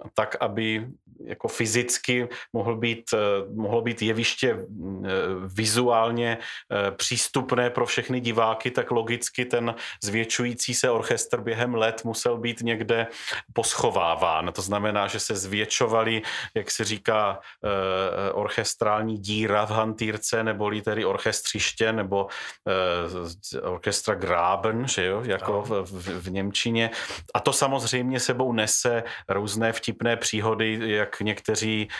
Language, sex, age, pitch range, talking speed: Czech, male, 40-59, 100-115 Hz, 115 wpm